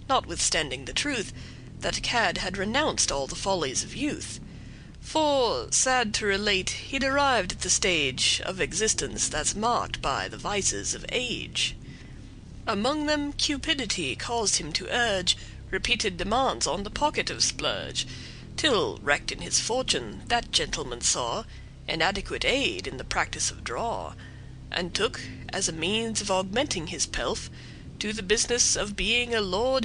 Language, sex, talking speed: English, female, 150 wpm